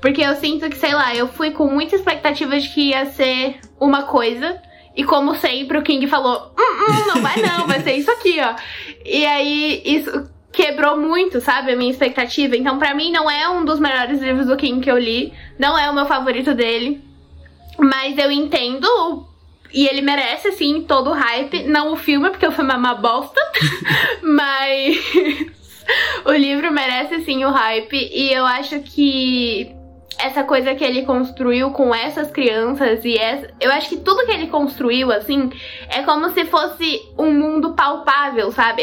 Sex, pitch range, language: female, 255-305 Hz, Portuguese